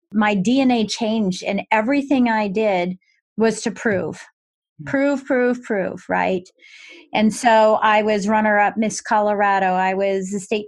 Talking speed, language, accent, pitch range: 145 wpm, English, American, 200-245 Hz